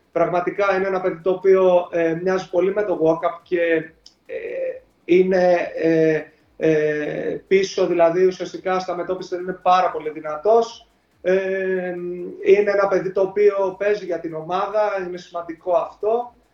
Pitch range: 175-215 Hz